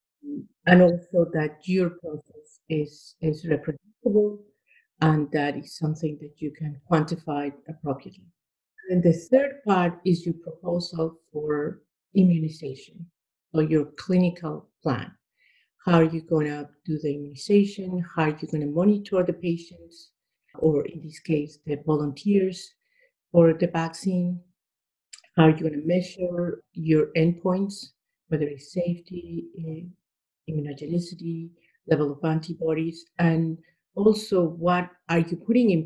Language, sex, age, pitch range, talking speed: English, female, 50-69, 155-180 Hz, 130 wpm